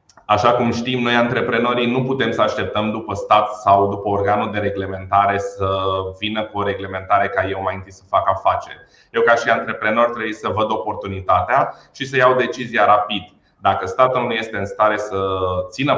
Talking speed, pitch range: 185 wpm, 95-115 Hz